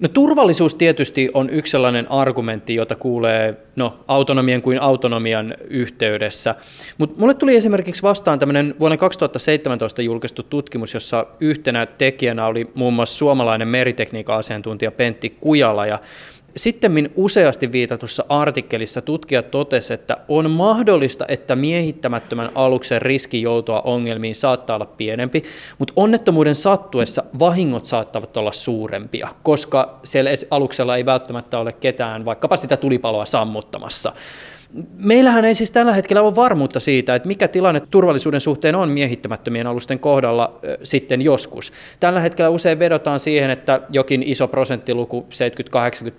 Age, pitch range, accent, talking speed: 20-39, 120-150 Hz, native, 130 wpm